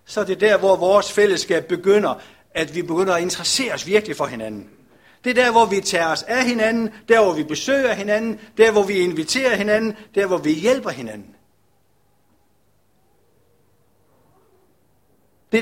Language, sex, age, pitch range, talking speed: Danish, male, 60-79, 140-215 Hz, 160 wpm